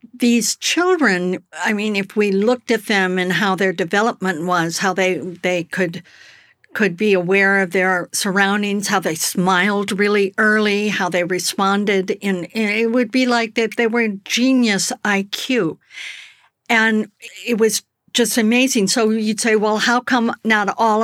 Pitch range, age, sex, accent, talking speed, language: 185-230 Hz, 60-79, female, American, 160 wpm, English